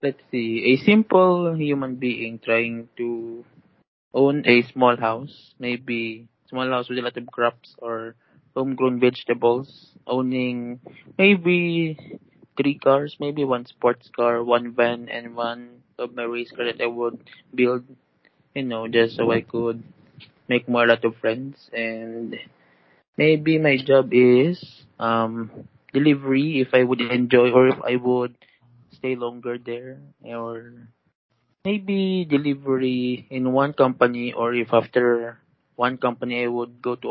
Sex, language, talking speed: male, English, 140 wpm